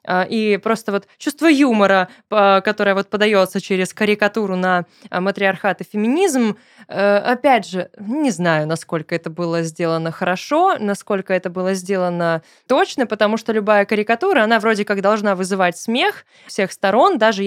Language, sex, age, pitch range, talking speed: Russian, female, 20-39, 185-235 Hz, 140 wpm